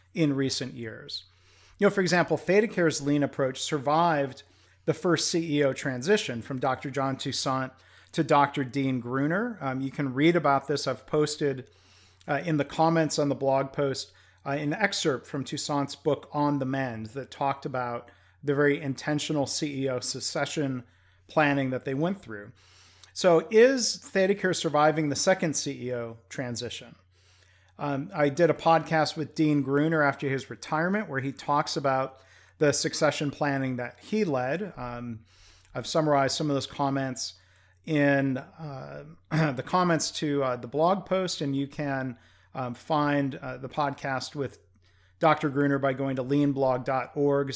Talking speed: 155 wpm